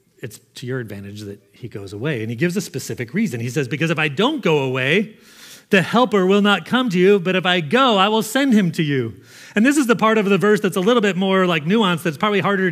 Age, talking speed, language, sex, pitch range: 30-49, 270 wpm, English, male, 130-185 Hz